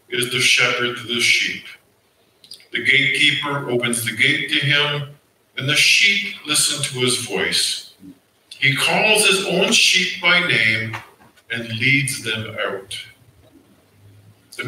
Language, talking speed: English, 130 wpm